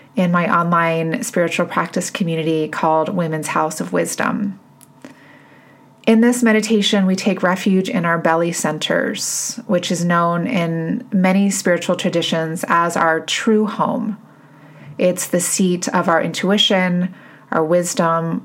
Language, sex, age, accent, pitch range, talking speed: English, female, 30-49, American, 165-195 Hz, 130 wpm